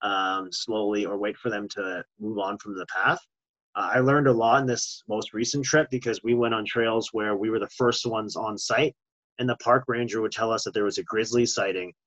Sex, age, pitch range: male, 30-49, 120-155 Hz